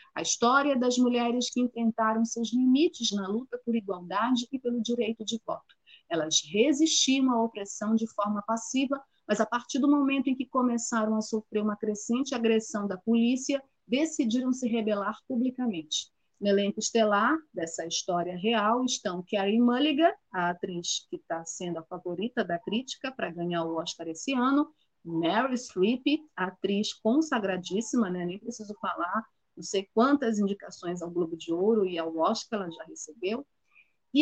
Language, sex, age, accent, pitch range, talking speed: Portuguese, female, 30-49, Brazilian, 195-250 Hz, 160 wpm